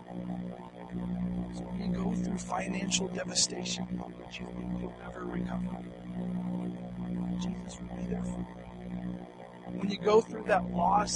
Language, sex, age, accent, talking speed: English, male, 50-69, American, 130 wpm